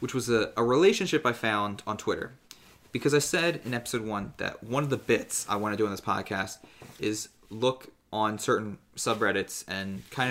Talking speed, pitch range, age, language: 200 wpm, 105-130 Hz, 20-39, English